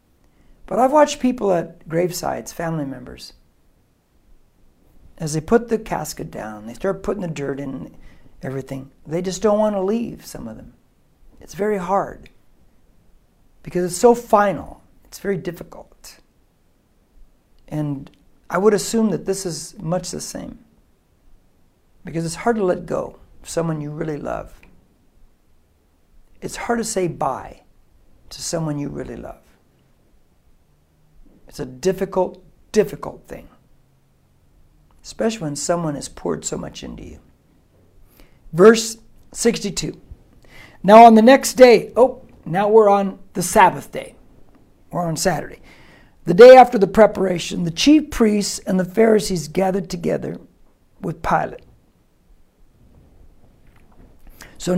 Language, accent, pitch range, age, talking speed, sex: English, American, 130-210 Hz, 60-79, 130 wpm, male